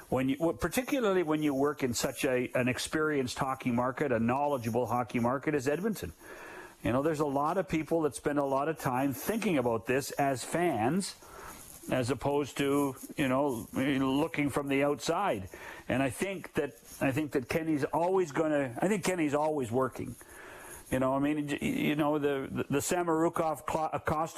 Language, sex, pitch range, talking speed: English, male, 135-160 Hz, 175 wpm